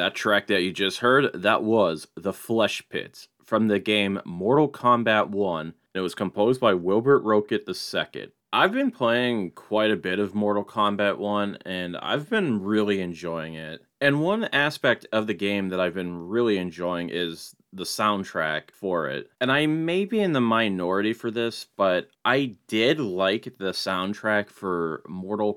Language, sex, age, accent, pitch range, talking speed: English, male, 20-39, American, 95-125 Hz, 170 wpm